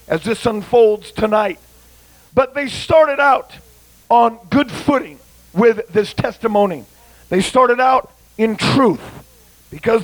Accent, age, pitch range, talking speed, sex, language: American, 50-69, 225-295 Hz, 120 wpm, male, English